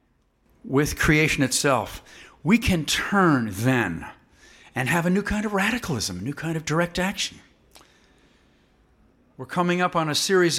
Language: English